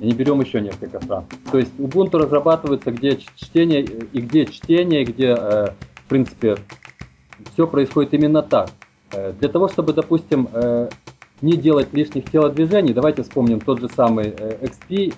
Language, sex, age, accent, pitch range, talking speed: Russian, male, 30-49, native, 120-160 Hz, 145 wpm